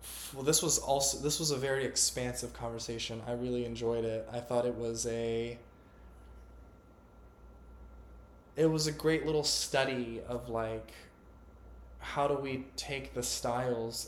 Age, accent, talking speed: 20-39, American, 140 wpm